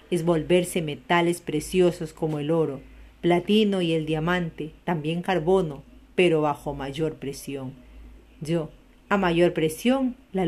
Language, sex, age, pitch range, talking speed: Spanish, female, 40-59, 160-205 Hz, 125 wpm